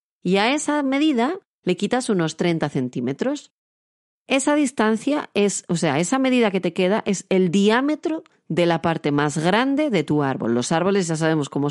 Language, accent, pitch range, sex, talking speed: Spanish, Spanish, 150-205 Hz, female, 180 wpm